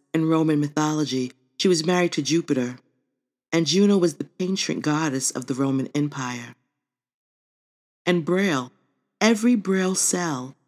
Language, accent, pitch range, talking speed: English, American, 145-185 Hz, 130 wpm